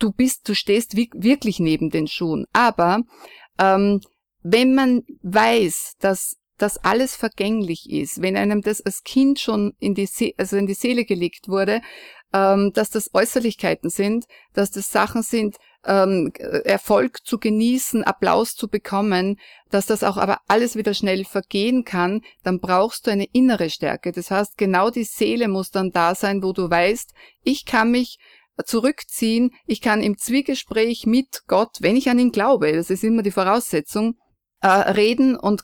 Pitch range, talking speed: 190-225 Hz, 165 wpm